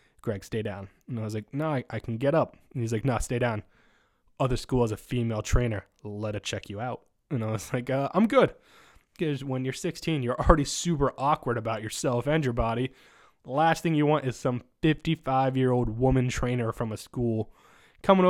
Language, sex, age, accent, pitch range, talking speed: English, male, 20-39, American, 115-145 Hz, 210 wpm